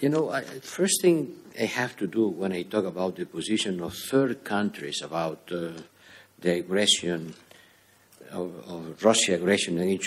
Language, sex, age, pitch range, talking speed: English, male, 60-79, 95-115 Hz, 155 wpm